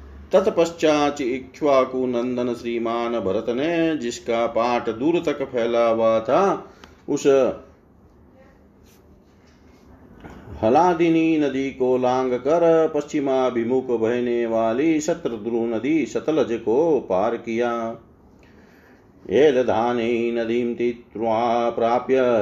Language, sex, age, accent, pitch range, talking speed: Hindi, male, 40-59, native, 110-130 Hz, 80 wpm